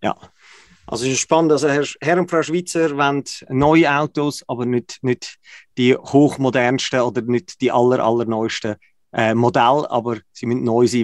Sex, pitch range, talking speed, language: male, 125-160 Hz, 170 wpm, German